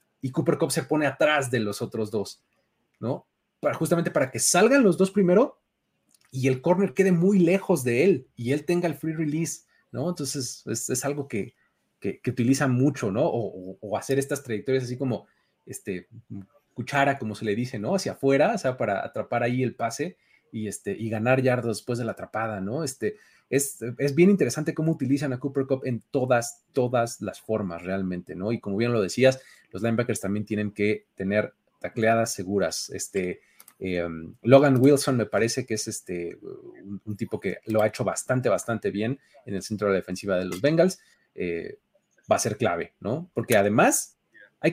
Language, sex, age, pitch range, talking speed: Spanish, male, 30-49, 110-155 Hz, 195 wpm